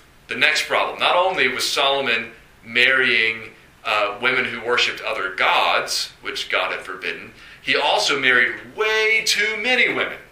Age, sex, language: 30-49, male, English